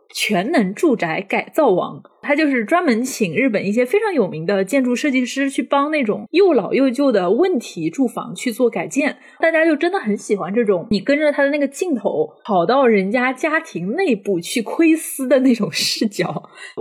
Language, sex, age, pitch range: Chinese, female, 20-39, 205-295 Hz